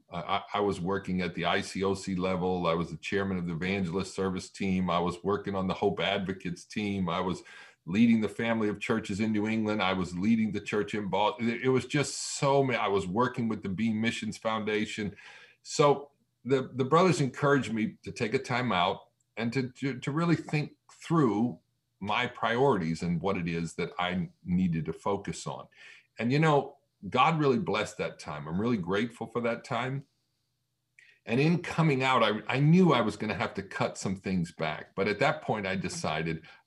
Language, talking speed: English, 200 wpm